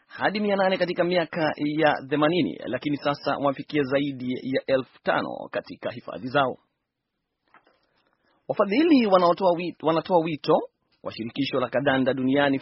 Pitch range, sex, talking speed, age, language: 135-160 Hz, male, 120 wpm, 30-49, Swahili